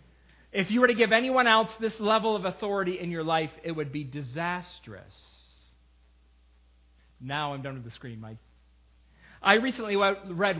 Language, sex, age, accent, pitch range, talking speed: English, male, 40-59, American, 155-220 Hz, 160 wpm